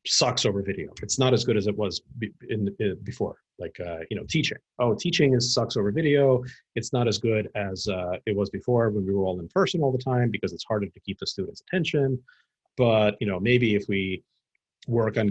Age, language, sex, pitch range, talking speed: 40-59, English, male, 100-130 Hz, 225 wpm